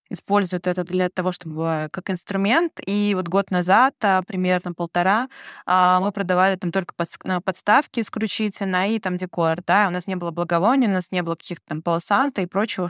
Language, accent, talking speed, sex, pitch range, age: Russian, native, 170 wpm, female, 175-195 Hz, 20-39